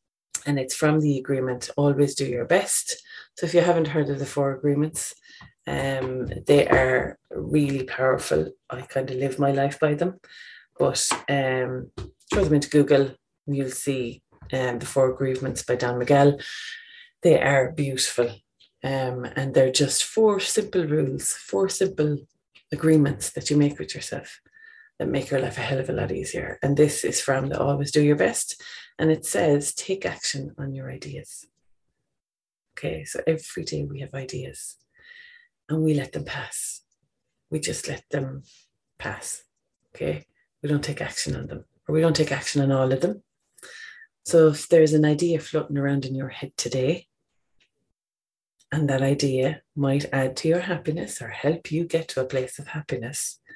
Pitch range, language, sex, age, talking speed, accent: 135-160 Hz, English, female, 30-49, 170 wpm, Irish